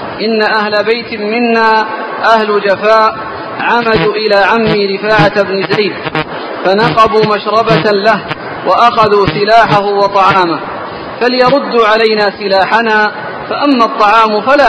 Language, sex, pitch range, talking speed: Arabic, male, 200-225 Hz, 100 wpm